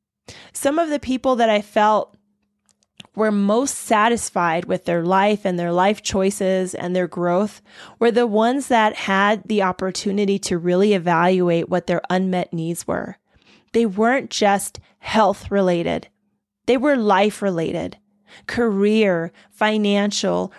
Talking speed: 135 wpm